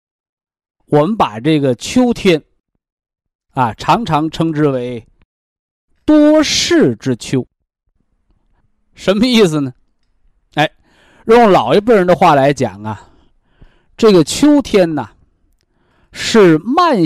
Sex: male